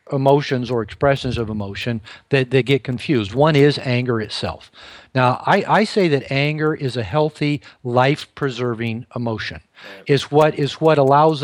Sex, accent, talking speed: male, American, 150 wpm